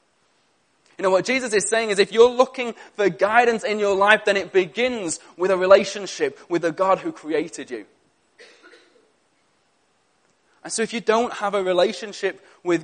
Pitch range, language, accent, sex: 185-230 Hz, English, British, male